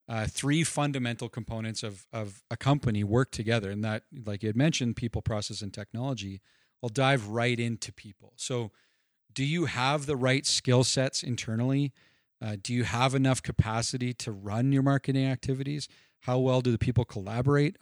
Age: 40-59